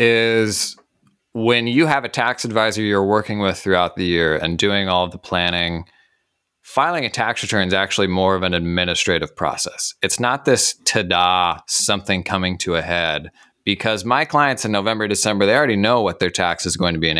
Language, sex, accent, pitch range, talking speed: English, male, American, 90-120 Hz, 195 wpm